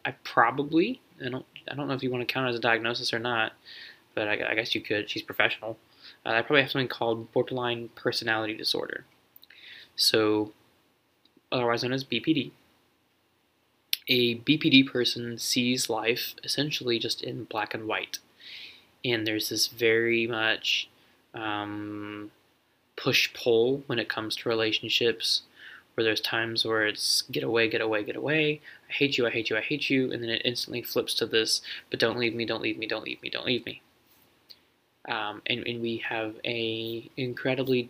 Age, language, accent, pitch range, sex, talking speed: 20-39, English, American, 115-130 Hz, male, 170 wpm